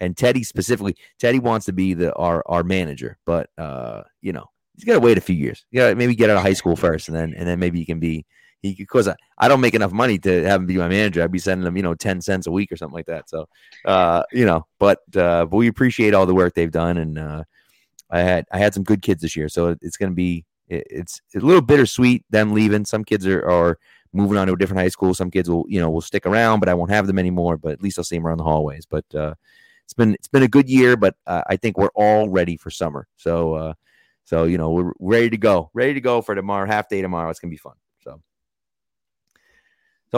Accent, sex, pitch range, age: American, male, 85-105 Hz, 30-49